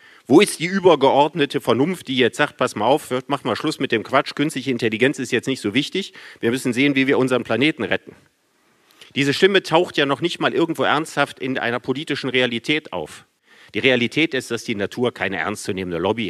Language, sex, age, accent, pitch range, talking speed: German, male, 50-69, German, 110-145 Hz, 205 wpm